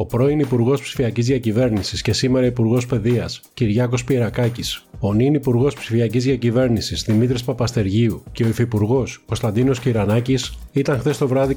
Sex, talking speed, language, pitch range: male, 140 wpm, Greek, 115-130 Hz